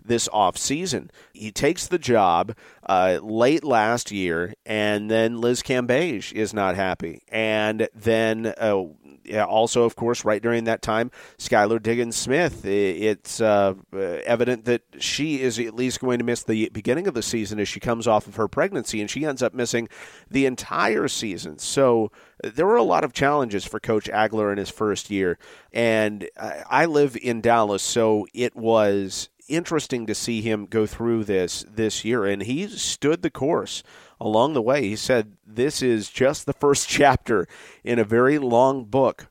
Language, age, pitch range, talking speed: English, 40-59, 105-130 Hz, 170 wpm